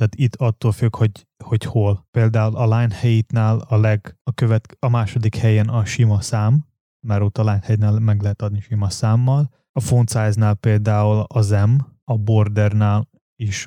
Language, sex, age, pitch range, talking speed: Hungarian, male, 20-39, 105-115 Hz, 175 wpm